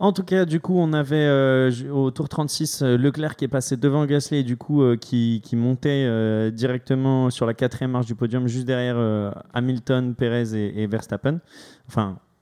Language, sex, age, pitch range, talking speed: French, male, 20-39, 115-140 Hz, 200 wpm